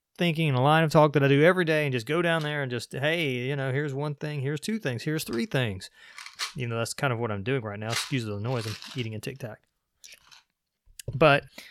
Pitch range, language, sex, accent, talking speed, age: 125-155 Hz, English, male, American, 250 wpm, 20-39